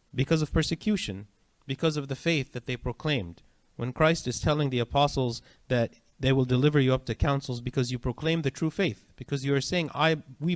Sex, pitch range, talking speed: male, 115-145 Hz, 205 wpm